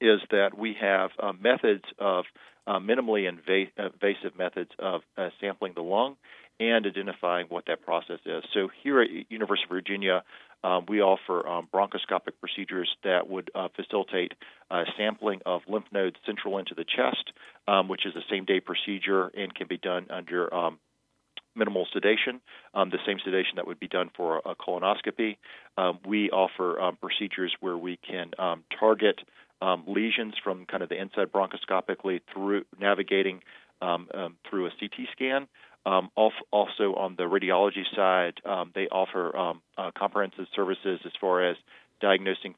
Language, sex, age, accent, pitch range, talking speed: English, male, 40-59, American, 95-105 Hz, 145 wpm